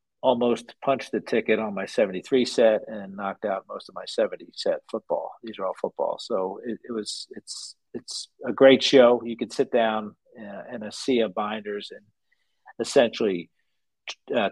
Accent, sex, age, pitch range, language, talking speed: American, male, 50-69, 100-130 Hz, English, 180 wpm